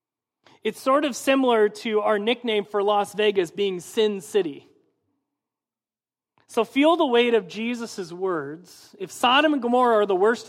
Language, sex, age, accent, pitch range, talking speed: English, male, 40-59, American, 170-225 Hz, 155 wpm